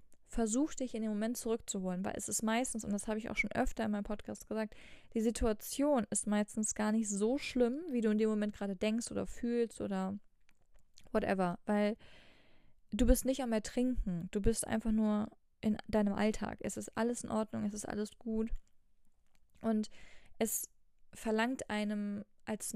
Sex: female